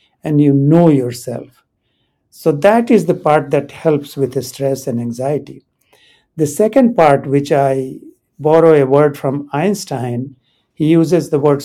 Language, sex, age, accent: English, male, 60-79, Indian